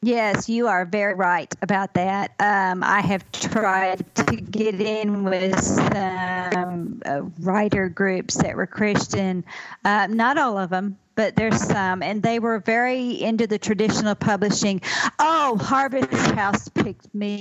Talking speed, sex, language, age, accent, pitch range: 150 wpm, female, English, 40-59, American, 195-235 Hz